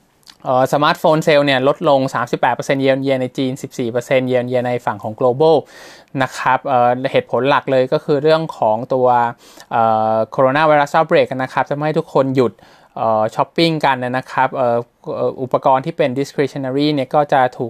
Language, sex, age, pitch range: Thai, male, 20-39, 125-150 Hz